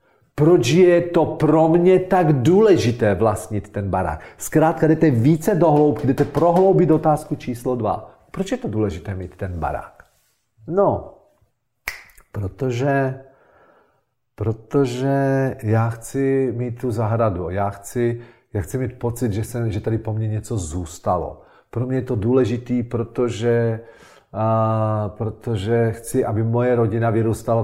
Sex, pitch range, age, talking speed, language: male, 110-150 Hz, 40-59, 130 wpm, Czech